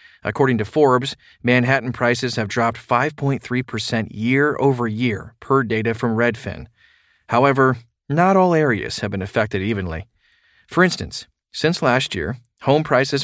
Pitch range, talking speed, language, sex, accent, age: 115-145 Hz, 135 wpm, English, male, American, 40-59